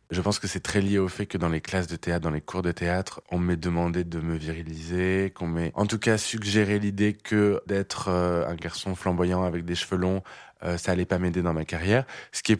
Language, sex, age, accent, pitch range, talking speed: French, male, 20-39, French, 85-100 Hz, 245 wpm